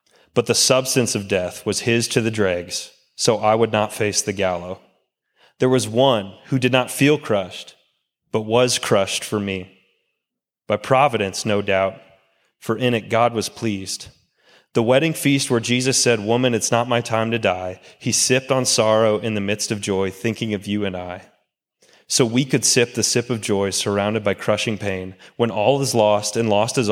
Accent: American